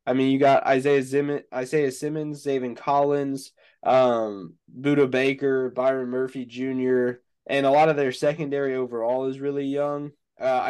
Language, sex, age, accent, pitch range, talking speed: English, male, 20-39, American, 125-145 Hz, 145 wpm